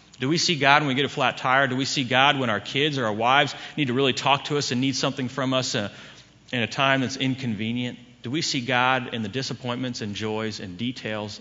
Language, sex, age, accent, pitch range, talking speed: English, male, 40-59, American, 115-145 Hz, 245 wpm